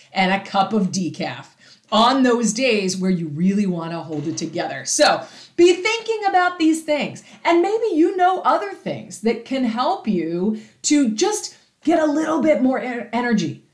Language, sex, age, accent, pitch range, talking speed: English, female, 40-59, American, 200-295 Hz, 175 wpm